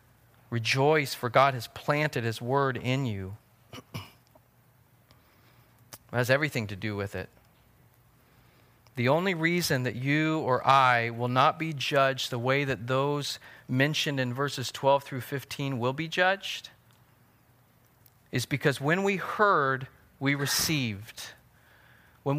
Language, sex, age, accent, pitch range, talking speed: English, male, 40-59, American, 120-145 Hz, 130 wpm